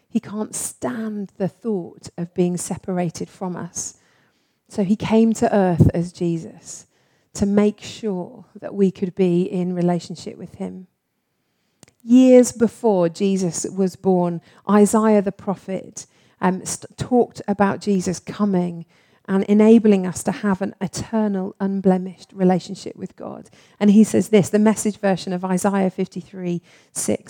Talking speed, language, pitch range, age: 140 wpm, English, 175-210 Hz, 40-59